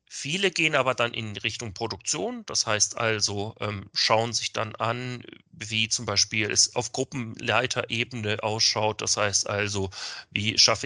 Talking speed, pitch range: 150 wpm, 105-130 Hz